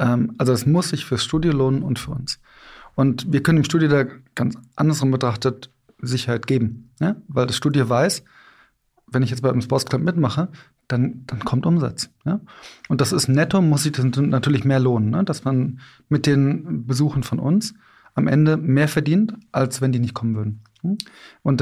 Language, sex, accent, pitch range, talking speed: German, male, German, 130-155 Hz, 190 wpm